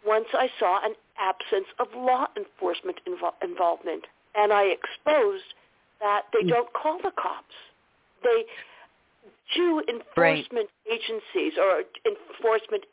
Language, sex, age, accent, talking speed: English, female, 50-69, American, 110 wpm